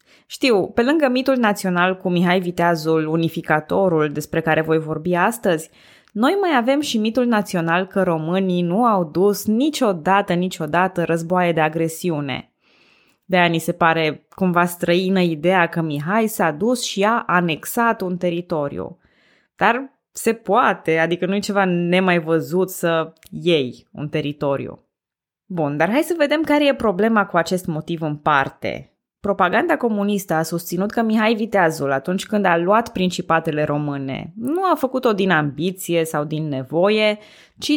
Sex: female